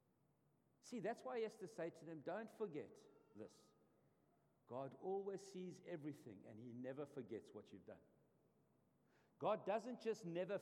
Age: 60-79